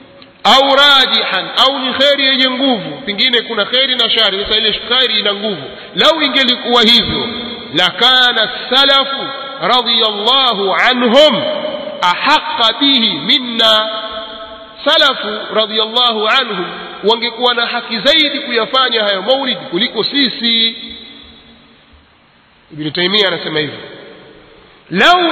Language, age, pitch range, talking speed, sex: Swahili, 50-69, 215-265 Hz, 105 wpm, male